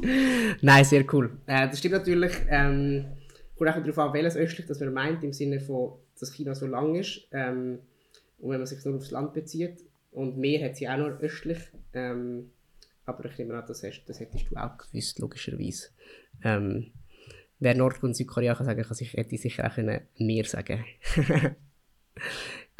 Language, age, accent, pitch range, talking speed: German, 20-39, German, 125-150 Hz, 180 wpm